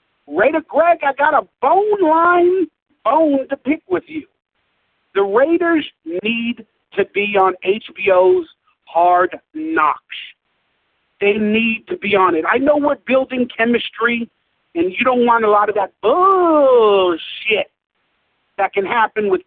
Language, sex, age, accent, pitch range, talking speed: English, male, 50-69, American, 200-315 Hz, 140 wpm